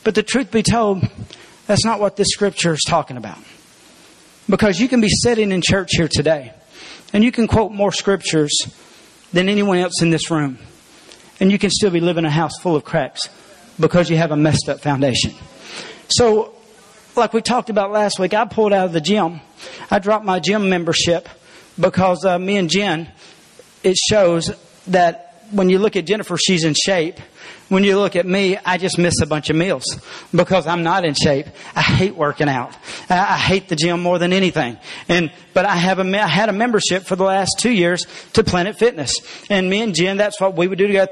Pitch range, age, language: 170-205 Hz, 40-59, English